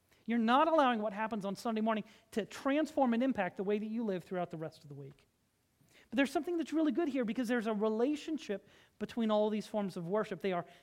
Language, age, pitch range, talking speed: English, 40-59, 195-260 Hz, 235 wpm